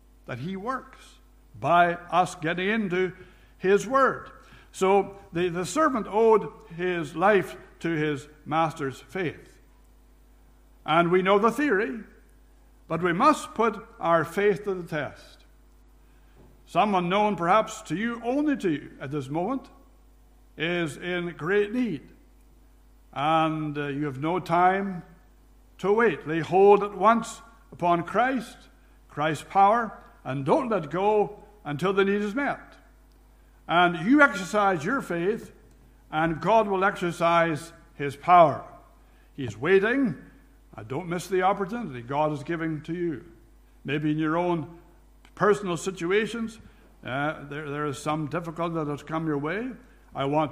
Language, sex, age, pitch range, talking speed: English, male, 60-79, 160-210 Hz, 135 wpm